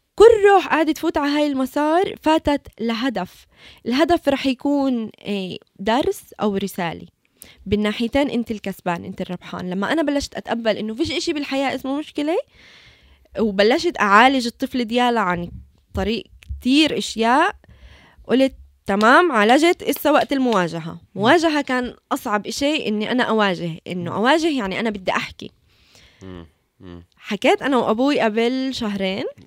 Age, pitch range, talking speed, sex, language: 20-39, 200-270 Hz, 125 wpm, female, Arabic